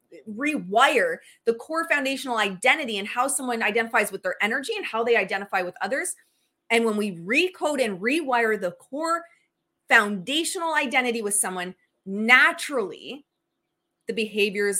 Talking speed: 135 wpm